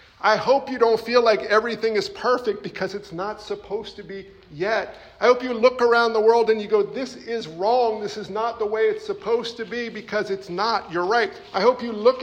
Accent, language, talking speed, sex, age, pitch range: American, English, 230 wpm, male, 50-69, 175-230 Hz